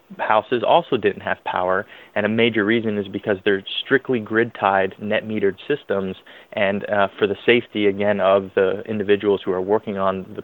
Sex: male